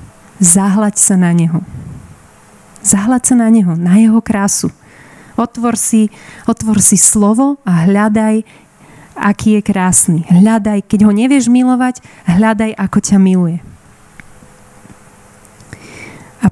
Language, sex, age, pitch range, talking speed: Slovak, female, 30-49, 185-220 Hz, 115 wpm